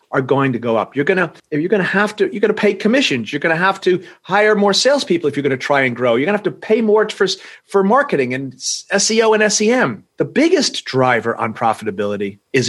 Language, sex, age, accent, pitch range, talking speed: English, male, 40-59, American, 120-190 Hz, 235 wpm